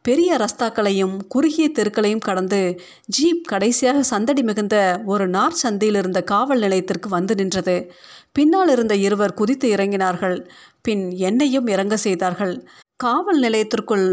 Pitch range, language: 190-255 Hz, Tamil